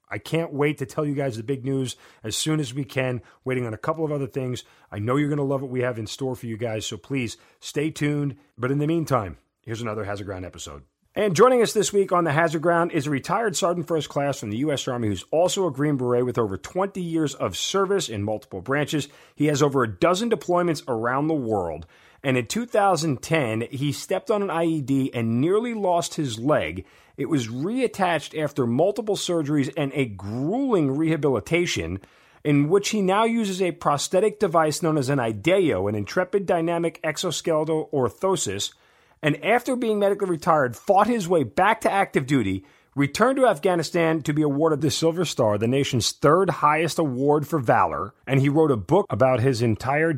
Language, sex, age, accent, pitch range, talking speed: English, male, 40-59, American, 125-170 Hz, 200 wpm